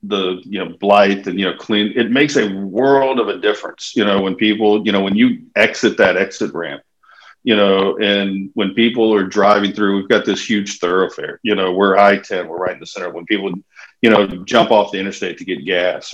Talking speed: 225 wpm